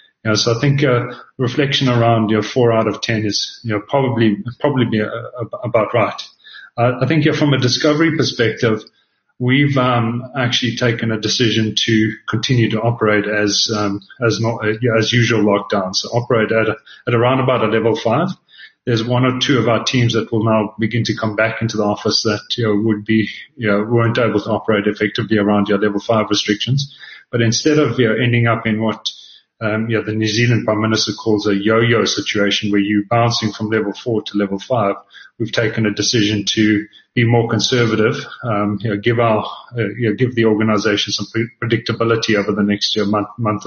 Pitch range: 110-125 Hz